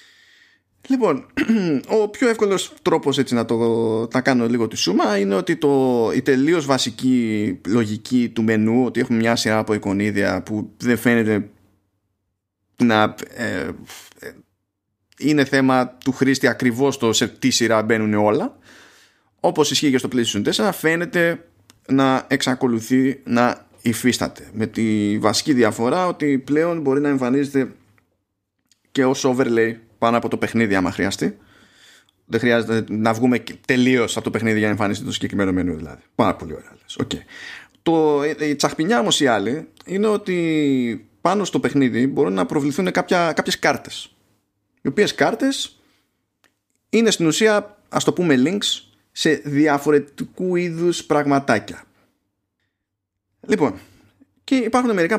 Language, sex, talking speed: Greek, male, 135 wpm